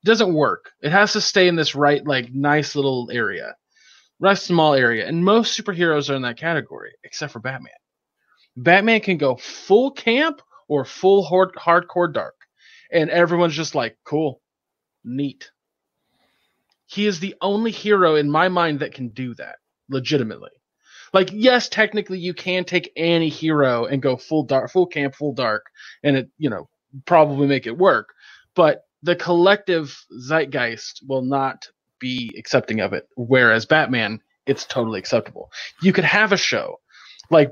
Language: English